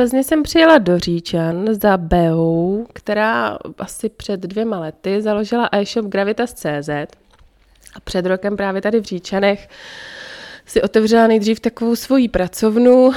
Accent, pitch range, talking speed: native, 185-220 Hz, 130 wpm